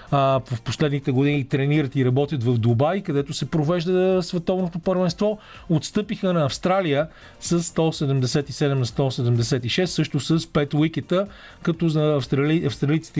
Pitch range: 135-175 Hz